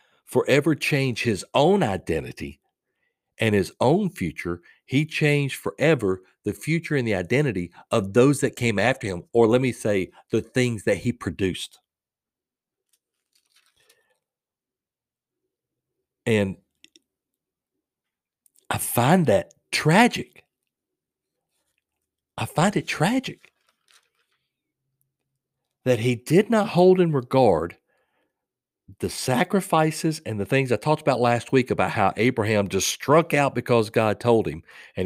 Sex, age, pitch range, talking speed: male, 50-69, 105-140 Hz, 120 wpm